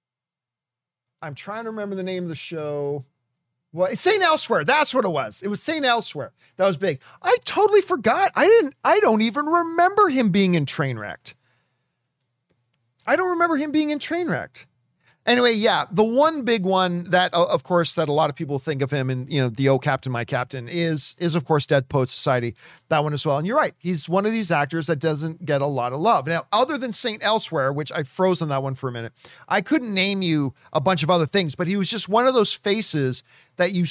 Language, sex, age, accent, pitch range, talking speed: English, male, 40-59, American, 150-225 Hz, 225 wpm